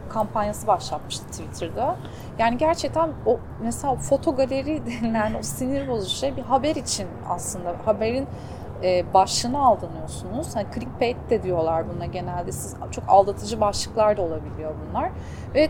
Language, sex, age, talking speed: Turkish, female, 30-49, 135 wpm